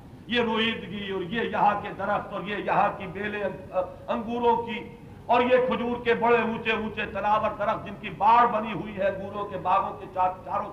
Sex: male